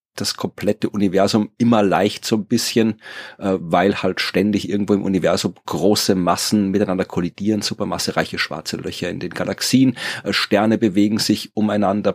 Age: 30-49